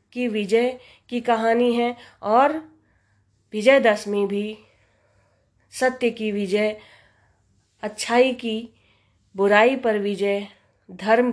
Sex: female